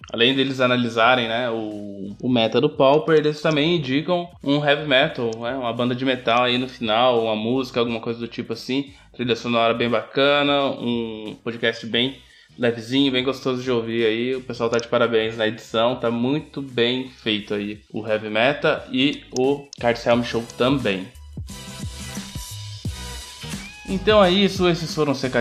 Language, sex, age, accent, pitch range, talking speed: Portuguese, male, 20-39, Brazilian, 110-135 Hz, 160 wpm